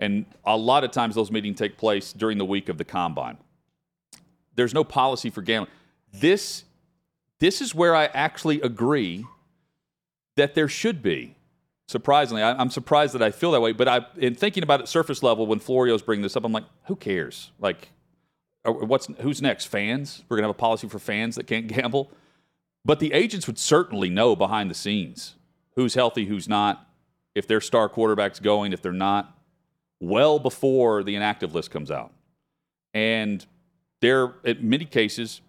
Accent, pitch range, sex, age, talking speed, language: American, 110-150 Hz, male, 40-59, 180 wpm, English